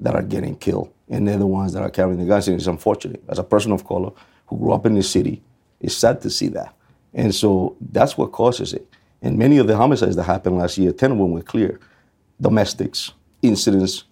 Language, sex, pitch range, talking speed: English, male, 95-115 Hz, 230 wpm